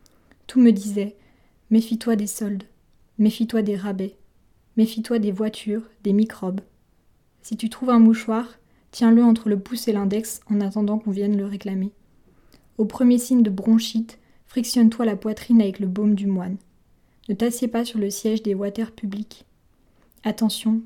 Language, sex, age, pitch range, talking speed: French, female, 20-39, 205-230 Hz, 155 wpm